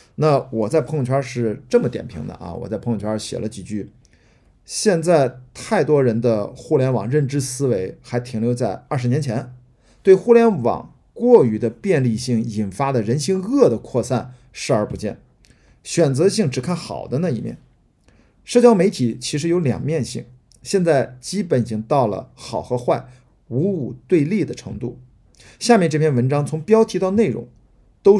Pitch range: 115-145 Hz